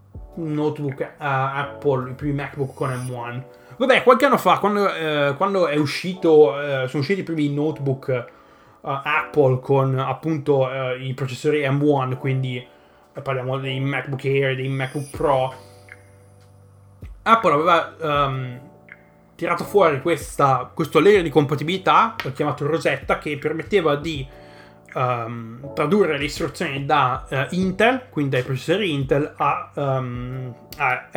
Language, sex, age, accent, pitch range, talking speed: Italian, male, 20-39, native, 130-160 Hz, 135 wpm